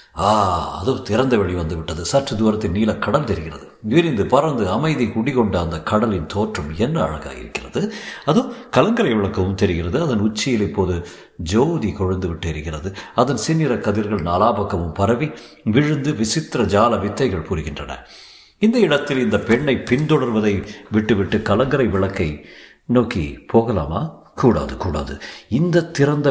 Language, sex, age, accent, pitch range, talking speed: Tamil, male, 50-69, native, 95-140 Hz, 125 wpm